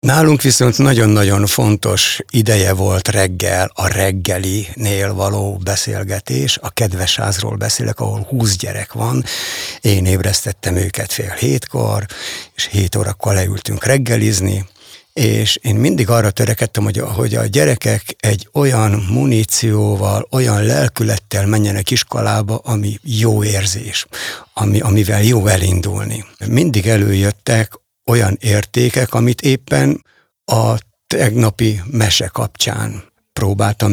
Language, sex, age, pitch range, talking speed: Hungarian, male, 60-79, 100-120 Hz, 115 wpm